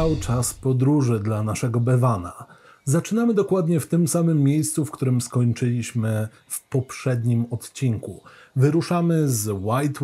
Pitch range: 125-160 Hz